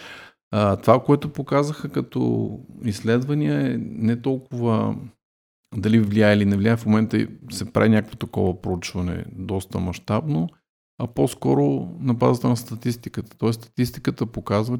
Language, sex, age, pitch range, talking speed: Bulgarian, male, 50-69, 95-120 Hz, 125 wpm